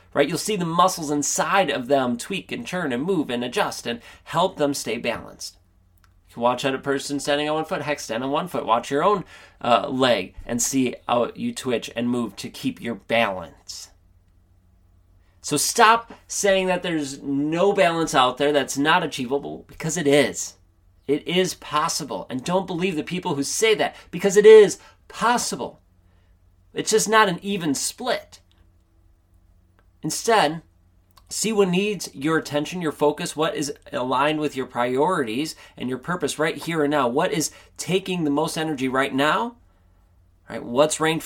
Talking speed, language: 175 wpm, English